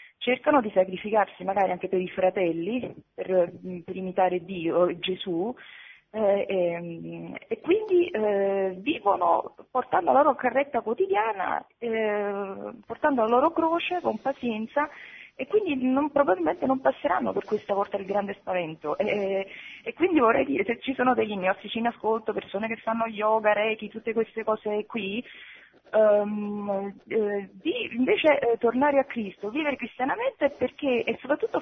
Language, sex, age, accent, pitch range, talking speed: Italian, female, 20-39, native, 185-260 Hz, 150 wpm